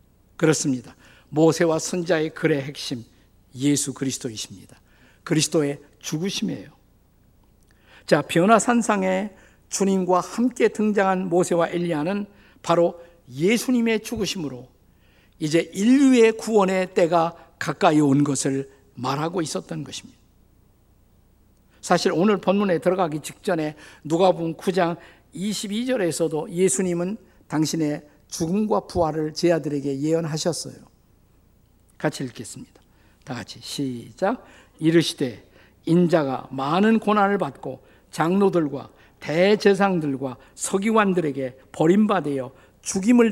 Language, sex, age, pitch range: Korean, male, 50-69, 135-195 Hz